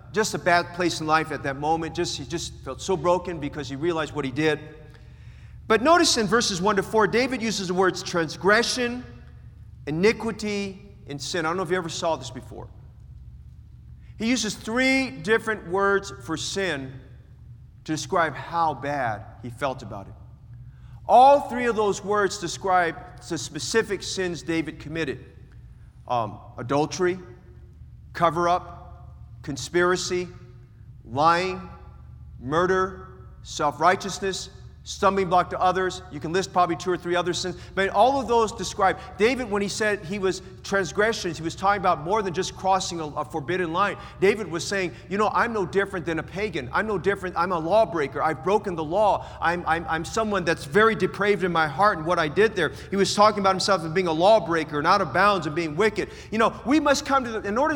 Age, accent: 40-59, American